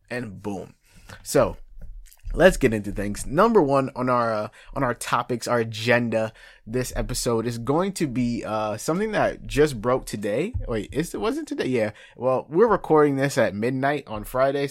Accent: American